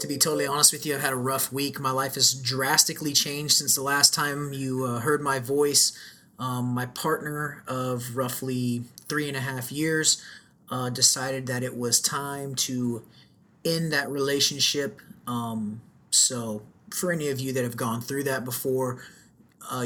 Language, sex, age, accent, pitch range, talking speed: English, male, 30-49, American, 125-150 Hz, 175 wpm